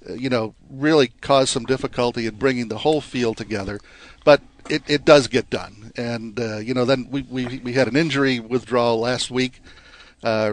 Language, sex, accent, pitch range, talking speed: English, male, American, 110-135 Hz, 190 wpm